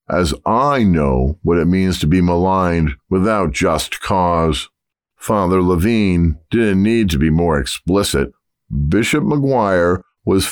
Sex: male